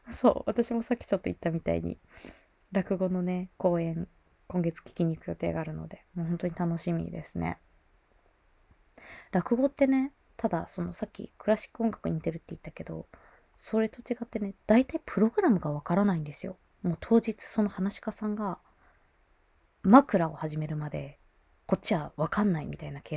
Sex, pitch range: female, 150-210 Hz